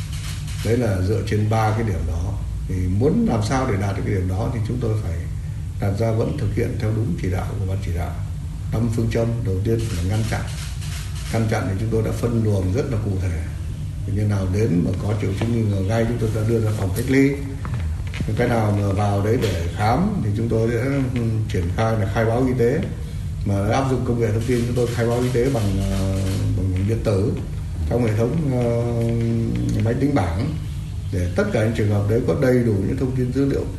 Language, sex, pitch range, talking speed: Vietnamese, male, 95-115 Hz, 235 wpm